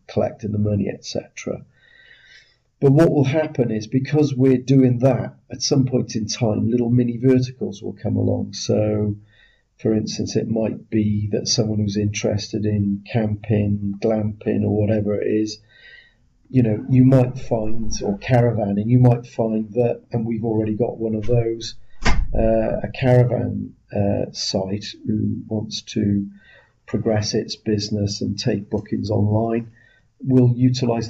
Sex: male